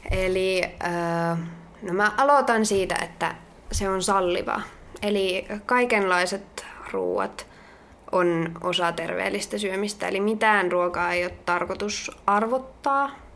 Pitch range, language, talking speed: 185-230 Hz, Finnish, 105 wpm